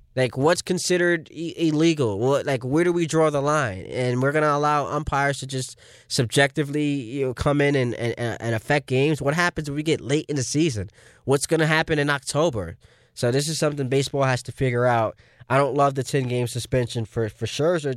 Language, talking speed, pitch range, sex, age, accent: English, 205 wpm, 110-140 Hz, male, 20-39, American